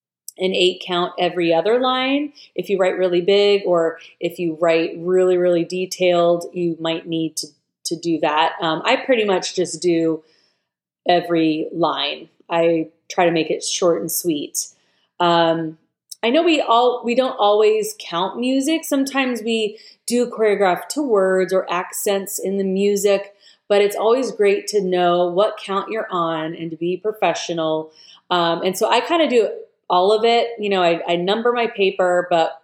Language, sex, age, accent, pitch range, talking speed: English, female, 30-49, American, 170-215 Hz, 175 wpm